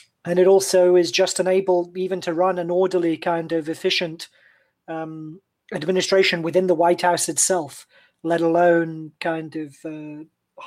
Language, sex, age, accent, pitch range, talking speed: English, male, 30-49, British, 160-180 Hz, 145 wpm